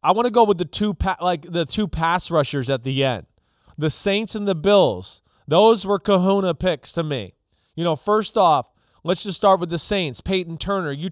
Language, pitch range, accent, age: English, 150-195 Hz, American, 30-49